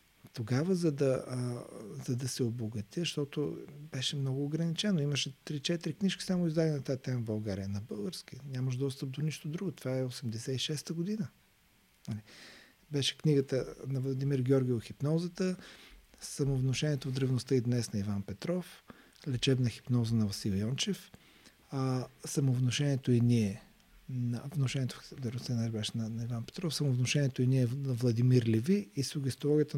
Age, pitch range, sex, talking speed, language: 40-59, 115-145 Hz, male, 140 wpm, Bulgarian